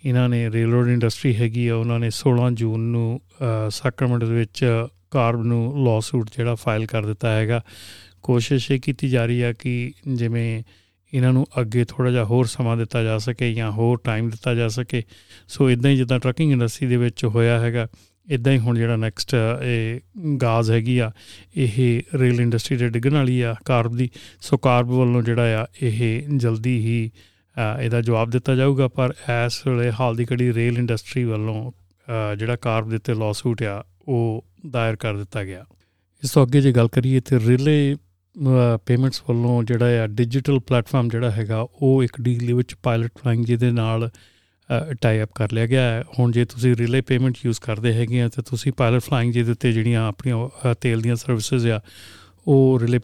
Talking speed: 180 wpm